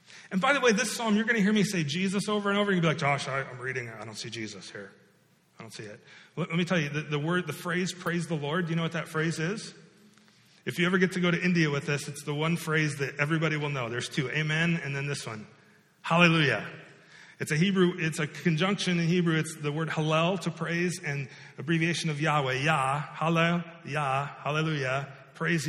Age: 40-59